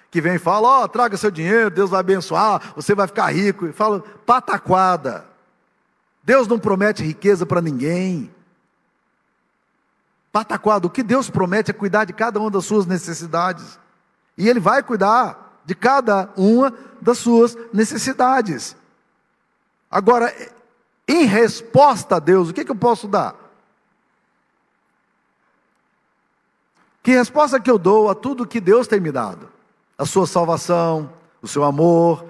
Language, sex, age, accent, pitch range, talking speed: Portuguese, male, 50-69, Brazilian, 165-225 Hz, 140 wpm